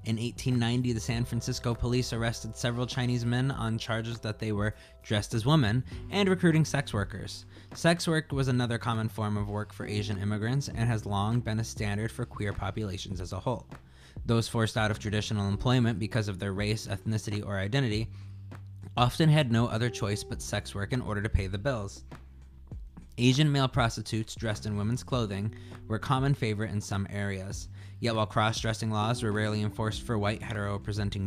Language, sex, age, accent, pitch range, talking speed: English, male, 20-39, American, 100-120 Hz, 185 wpm